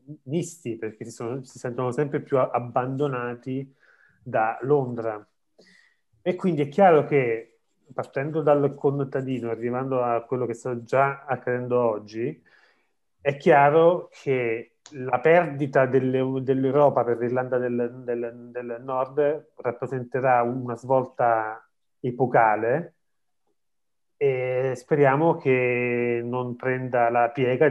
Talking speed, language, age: 110 wpm, Italian, 30-49